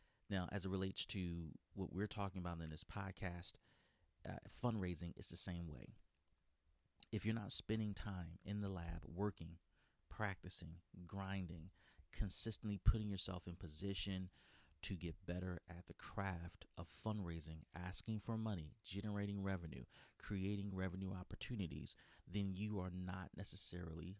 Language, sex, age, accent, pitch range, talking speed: English, male, 30-49, American, 85-100 Hz, 135 wpm